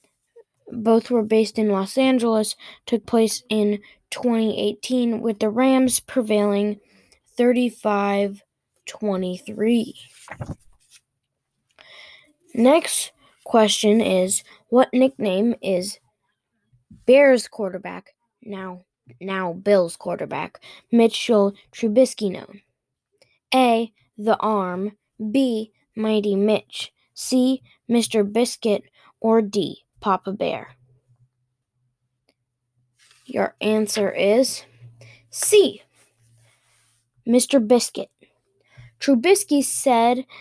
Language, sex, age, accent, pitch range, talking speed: English, female, 10-29, American, 195-245 Hz, 75 wpm